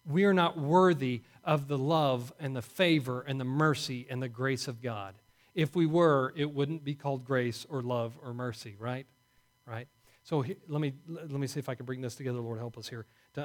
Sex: male